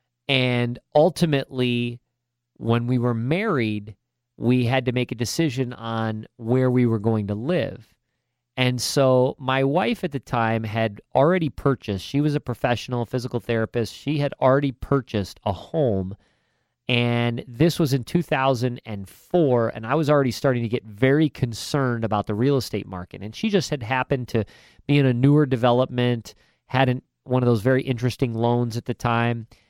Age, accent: 40-59, American